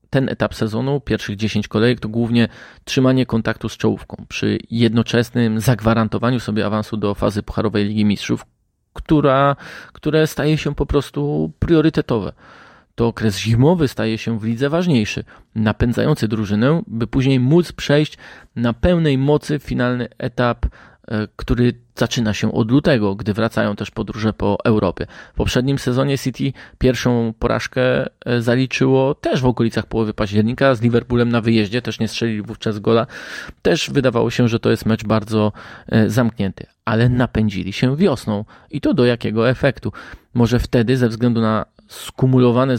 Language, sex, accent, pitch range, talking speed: Polish, male, native, 110-130 Hz, 145 wpm